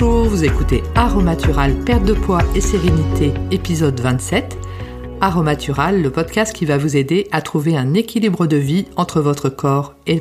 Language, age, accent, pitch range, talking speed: French, 50-69, French, 140-180 Hz, 160 wpm